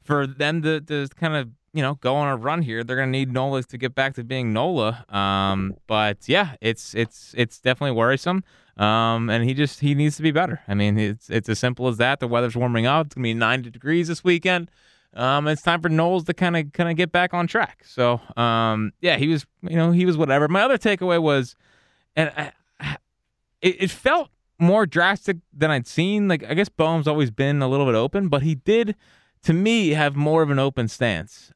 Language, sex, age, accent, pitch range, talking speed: English, male, 20-39, American, 110-150 Hz, 225 wpm